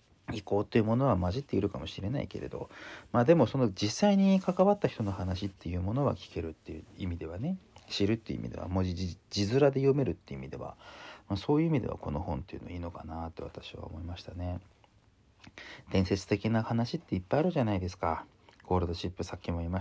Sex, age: male, 40-59